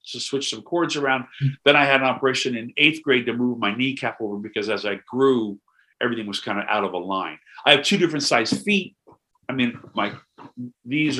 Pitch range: 115-160 Hz